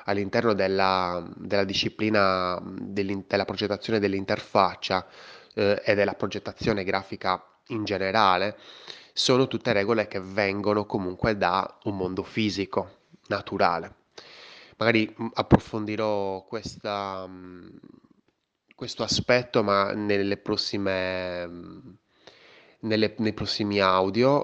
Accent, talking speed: native, 85 wpm